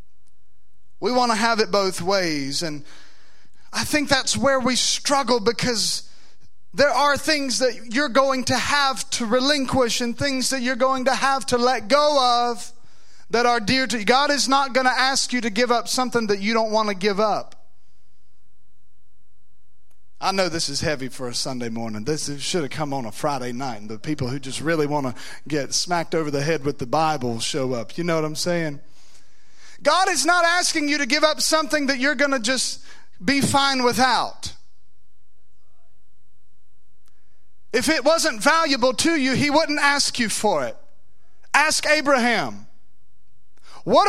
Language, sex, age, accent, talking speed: English, male, 30-49, American, 175 wpm